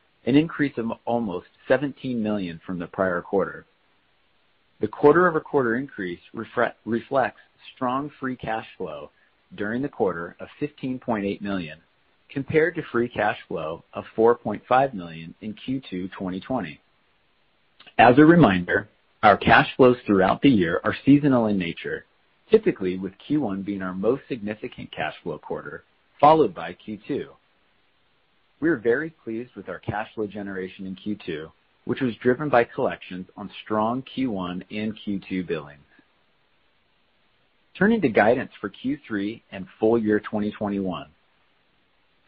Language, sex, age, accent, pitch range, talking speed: English, male, 40-59, American, 100-130 Hz, 135 wpm